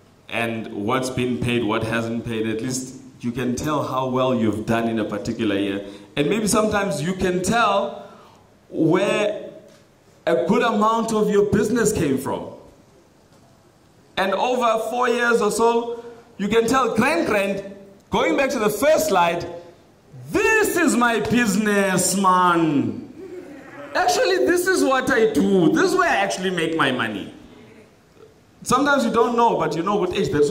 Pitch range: 130-215 Hz